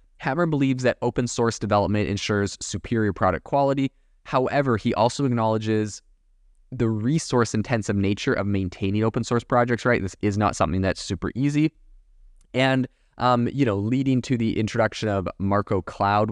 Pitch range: 100-125 Hz